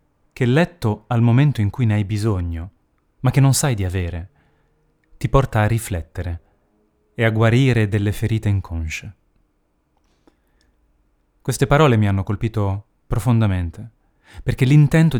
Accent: native